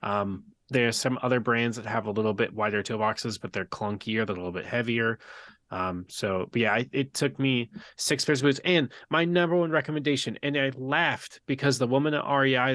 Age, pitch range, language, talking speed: 20-39, 115-140 Hz, English, 215 wpm